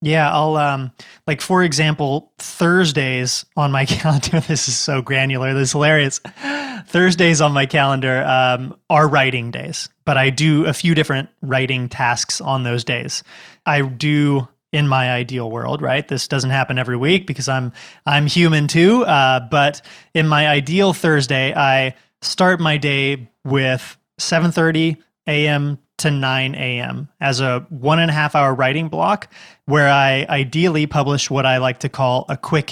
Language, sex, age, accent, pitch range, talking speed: English, male, 20-39, American, 135-155 Hz, 165 wpm